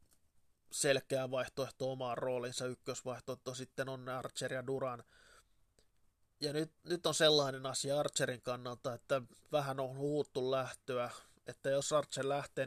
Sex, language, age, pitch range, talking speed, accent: male, Finnish, 20-39, 120-135 Hz, 130 wpm, native